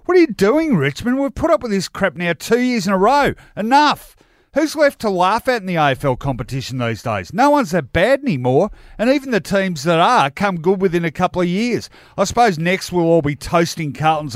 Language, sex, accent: English, male, Australian